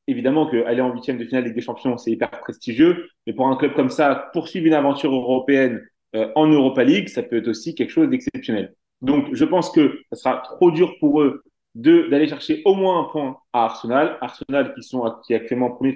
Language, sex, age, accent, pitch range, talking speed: French, male, 30-49, French, 125-175 Hz, 230 wpm